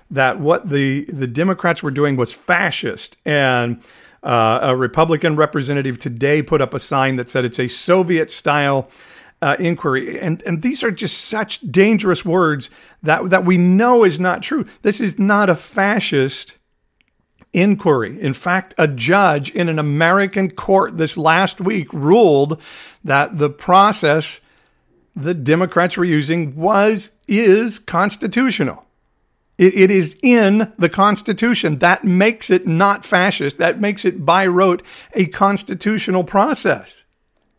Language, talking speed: English, 140 wpm